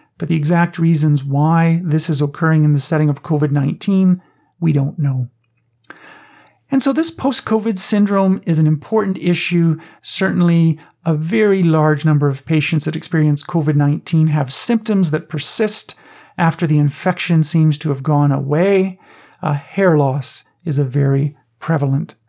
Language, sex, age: English, male, 40-59